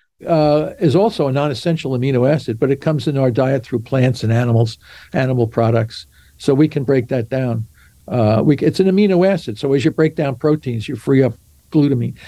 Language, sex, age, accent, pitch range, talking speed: English, male, 60-79, American, 125-165 Hz, 200 wpm